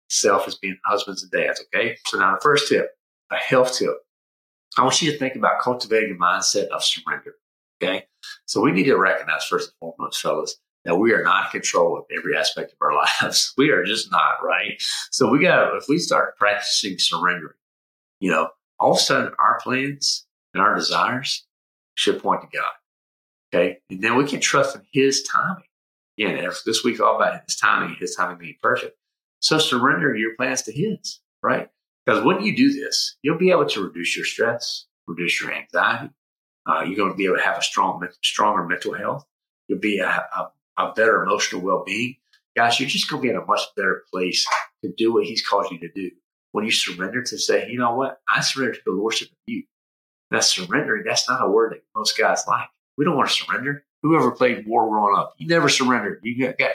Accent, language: American, English